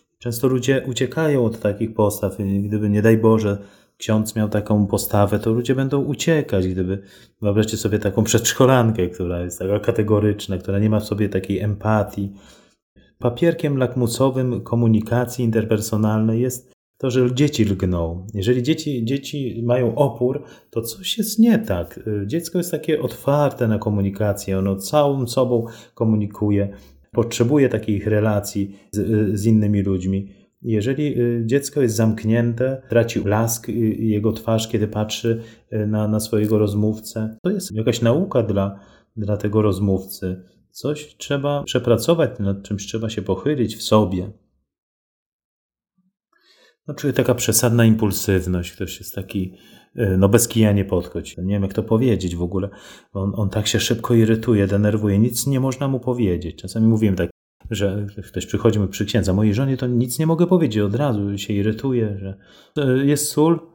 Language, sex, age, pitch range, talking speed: Polish, male, 30-49, 100-130 Hz, 145 wpm